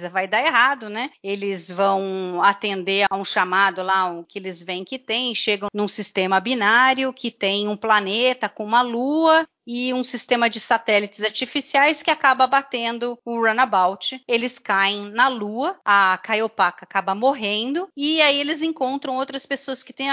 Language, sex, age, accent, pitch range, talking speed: Portuguese, female, 30-49, Brazilian, 205-255 Hz, 165 wpm